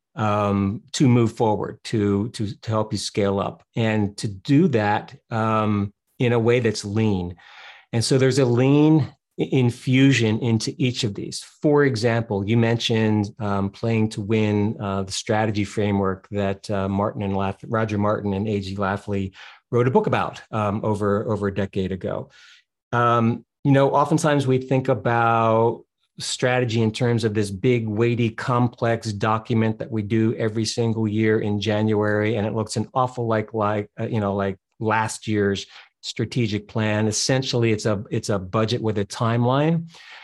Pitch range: 110-130 Hz